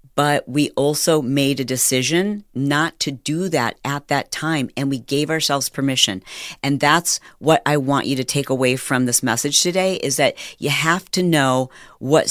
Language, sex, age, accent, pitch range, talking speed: English, female, 40-59, American, 130-160 Hz, 185 wpm